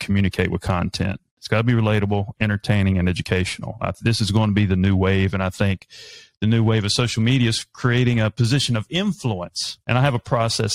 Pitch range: 100-125 Hz